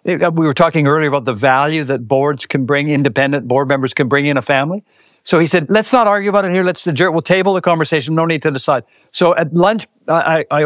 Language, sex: English, male